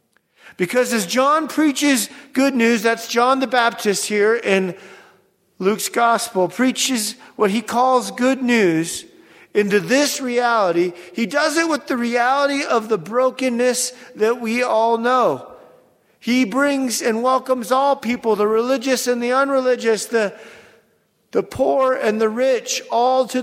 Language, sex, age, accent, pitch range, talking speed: English, male, 40-59, American, 210-250 Hz, 140 wpm